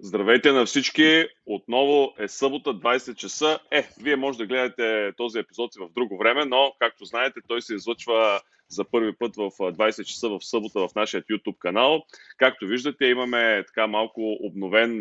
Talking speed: 170 wpm